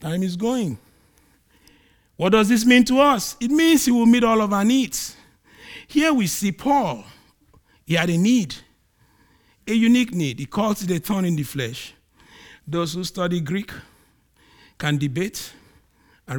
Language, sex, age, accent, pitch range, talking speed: English, male, 50-69, Nigerian, 155-250 Hz, 160 wpm